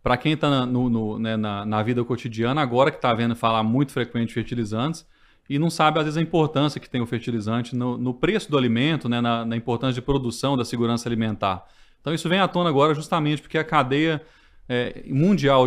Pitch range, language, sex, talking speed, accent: 115-140 Hz, Portuguese, male, 220 wpm, Brazilian